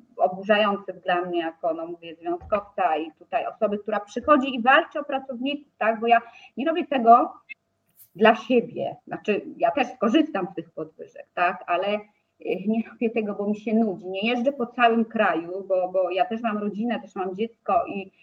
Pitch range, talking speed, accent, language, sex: 215-275 Hz, 180 wpm, native, Polish, female